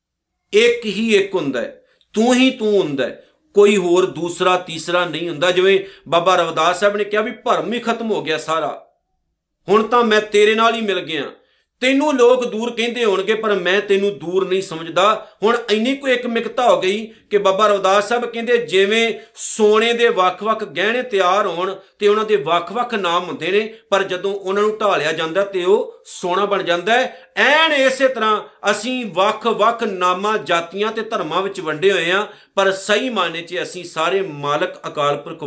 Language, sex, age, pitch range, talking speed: Punjabi, male, 50-69, 180-230 Hz, 175 wpm